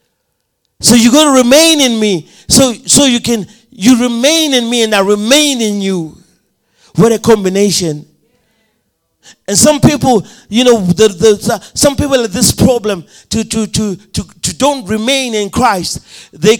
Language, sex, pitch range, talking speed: English, male, 200-255 Hz, 165 wpm